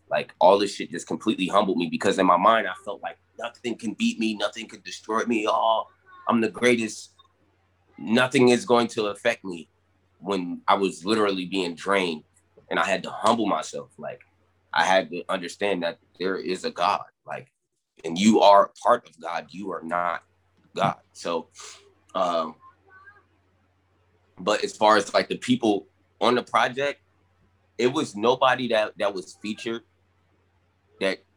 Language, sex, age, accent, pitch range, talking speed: English, male, 20-39, American, 90-110 Hz, 165 wpm